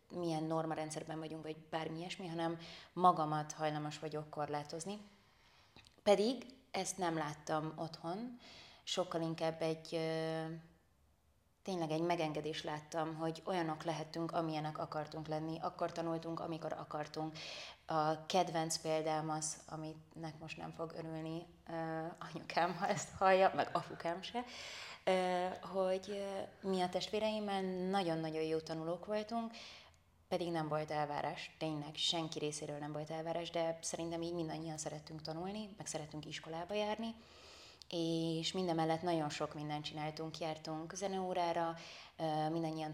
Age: 20-39